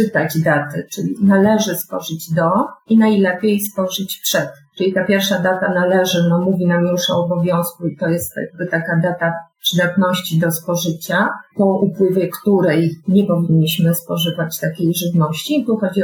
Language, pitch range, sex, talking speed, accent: Polish, 175-205 Hz, female, 150 wpm, native